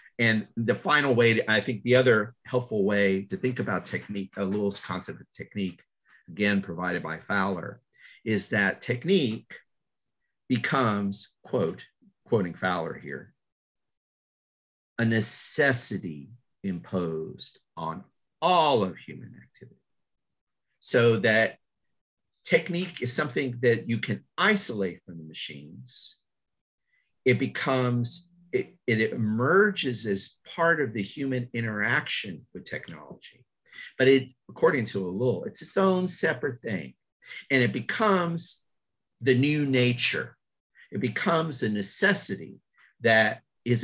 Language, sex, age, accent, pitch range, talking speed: English, male, 50-69, American, 100-150 Hz, 120 wpm